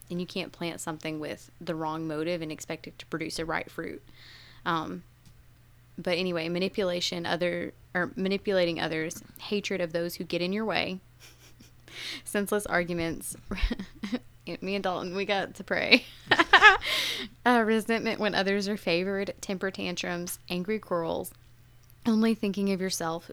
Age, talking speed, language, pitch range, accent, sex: 20-39, 145 wpm, English, 160-195 Hz, American, female